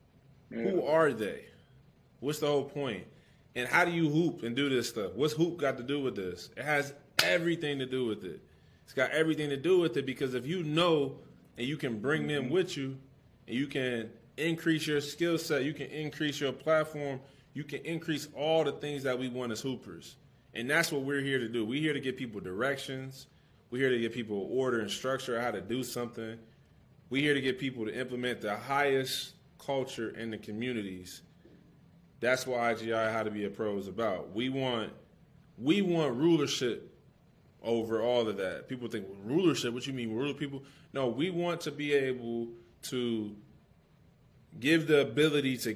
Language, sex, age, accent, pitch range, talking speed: English, male, 20-39, American, 115-145 Hz, 195 wpm